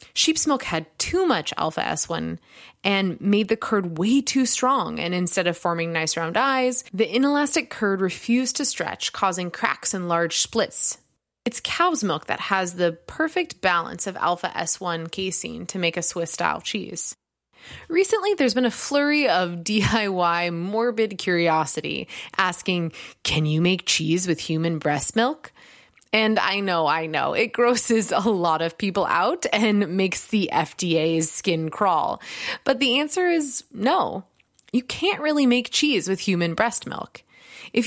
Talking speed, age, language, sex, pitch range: 160 wpm, 20-39, English, female, 175-245 Hz